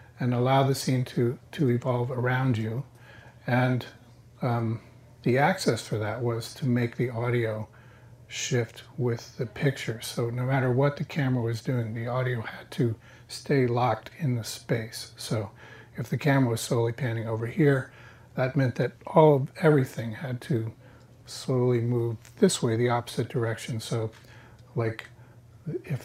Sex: male